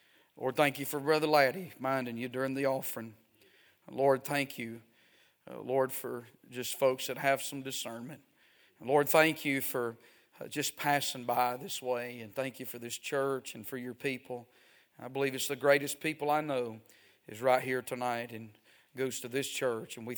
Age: 40-59